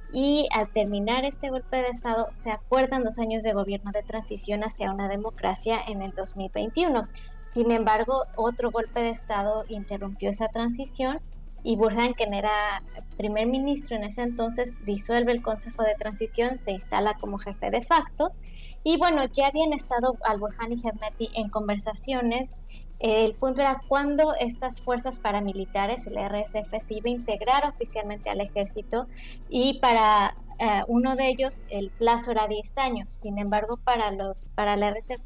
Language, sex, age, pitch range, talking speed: Spanish, male, 20-39, 210-245 Hz, 160 wpm